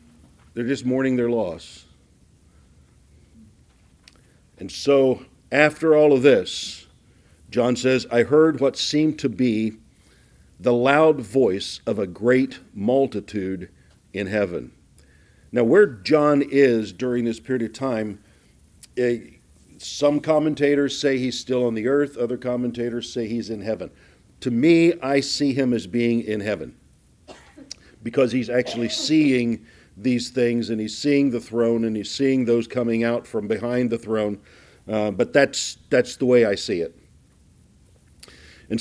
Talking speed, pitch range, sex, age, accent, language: 140 wpm, 115-145 Hz, male, 50-69, American, English